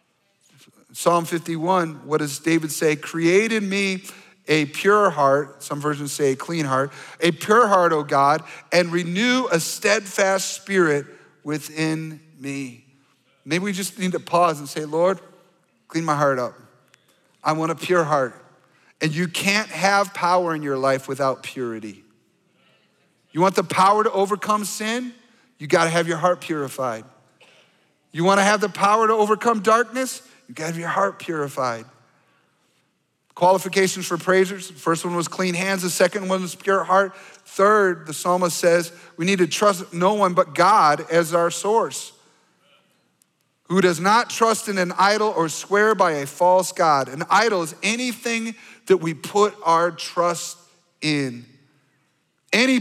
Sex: male